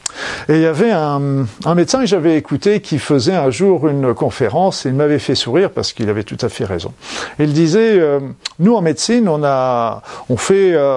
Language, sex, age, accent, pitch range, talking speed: French, male, 50-69, French, 130-195 Hz, 205 wpm